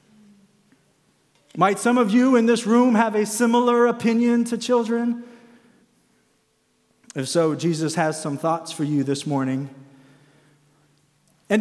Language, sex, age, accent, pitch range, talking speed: English, male, 40-59, American, 165-225 Hz, 125 wpm